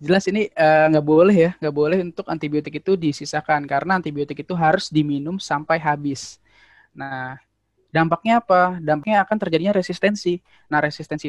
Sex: male